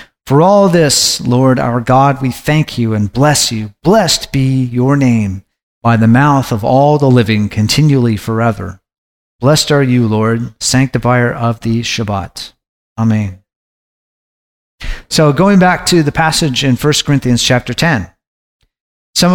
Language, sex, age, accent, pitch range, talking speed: English, male, 50-69, American, 120-150 Hz, 145 wpm